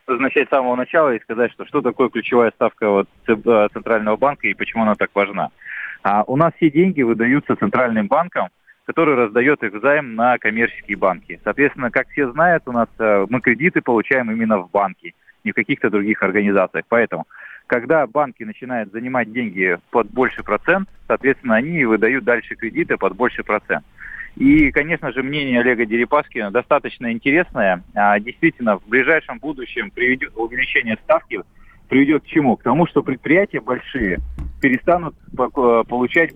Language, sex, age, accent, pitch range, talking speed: Russian, male, 30-49, native, 110-145 Hz, 155 wpm